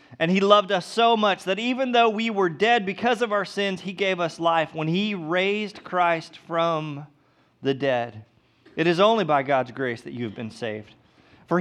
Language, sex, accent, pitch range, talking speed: English, male, American, 145-195 Hz, 200 wpm